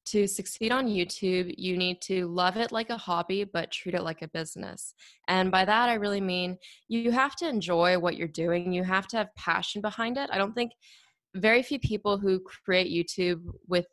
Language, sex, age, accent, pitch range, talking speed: English, female, 20-39, American, 175-210 Hz, 205 wpm